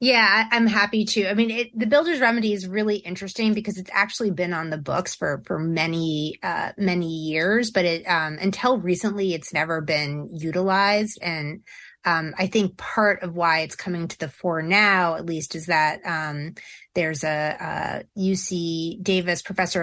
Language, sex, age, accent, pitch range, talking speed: English, female, 30-49, American, 160-200 Hz, 180 wpm